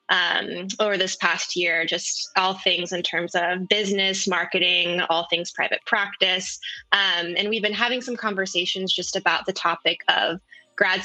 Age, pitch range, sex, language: 20-39, 180-210 Hz, female, English